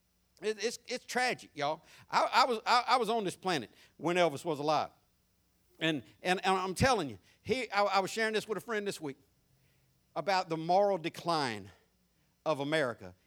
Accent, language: American, English